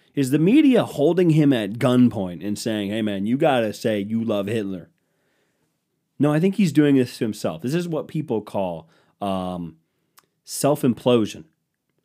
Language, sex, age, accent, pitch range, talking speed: English, male, 30-49, American, 105-150 Hz, 160 wpm